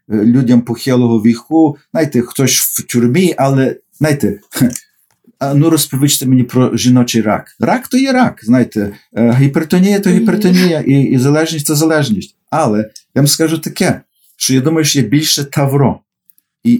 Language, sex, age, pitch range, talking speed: Ukrainian, male, 50-69, 120-155 Hz, 150 wpm